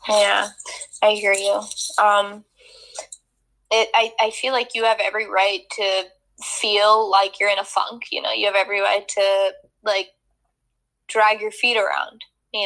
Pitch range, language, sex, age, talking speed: 190-225 Hz, English, female, 10-29, 155 wpm